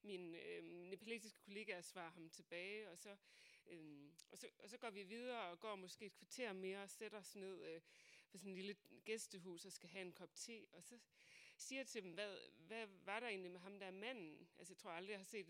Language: Danish